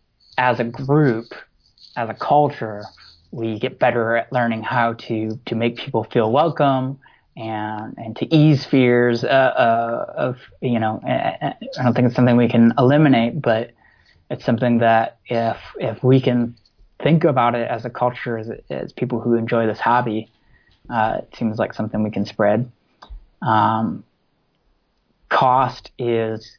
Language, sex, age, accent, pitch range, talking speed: English, male, 20-39, American, 115-125 Hz, 150 wpm